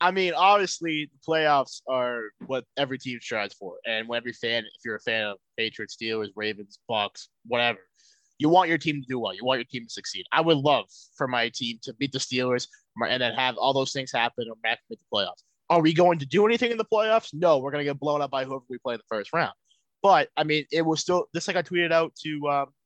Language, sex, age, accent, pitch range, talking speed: English, male, 20-39, American, 130-170 Hz, 255 wpm